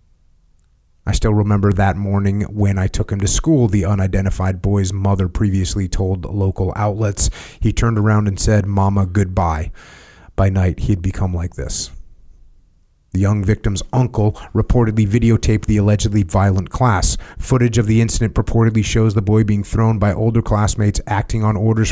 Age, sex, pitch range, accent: 30-49, male, 90-110 Hz, American